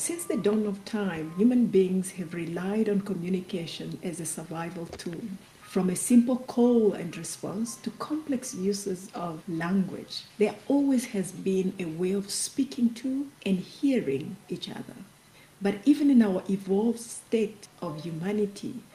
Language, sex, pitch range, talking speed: English, female, 185-230 Hz, 150 wpm